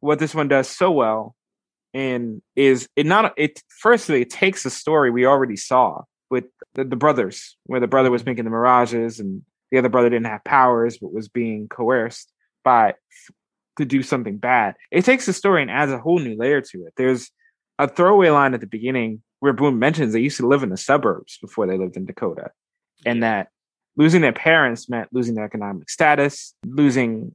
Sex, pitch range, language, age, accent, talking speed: male, 120-155 Hz, English, 20-39, American, 200 wpm